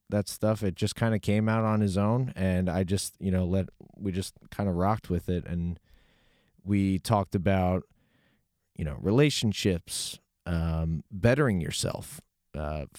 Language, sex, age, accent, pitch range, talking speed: English, male, 30-49, American, 85-105 Hz, 160 wpm